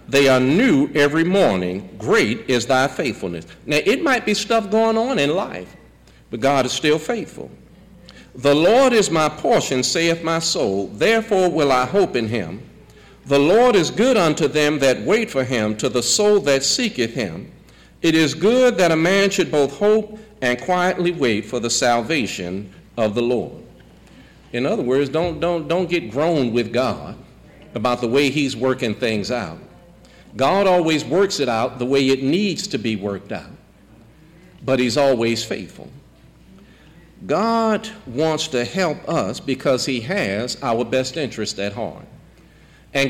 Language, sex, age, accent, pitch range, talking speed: English, male, 50-69, American, 125-185 Hz, 165 wpm